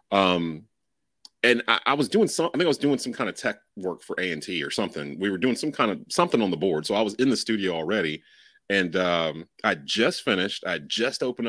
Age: 30-49